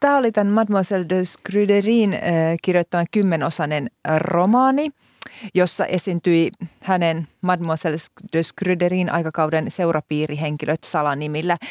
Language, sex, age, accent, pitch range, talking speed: Finnish, female, 30-49, native, 155-190 Hz, 90 wpm